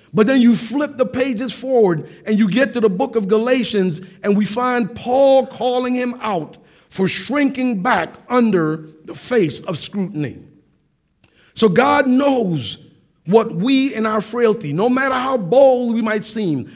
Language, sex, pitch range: English, male, 175-245 Hz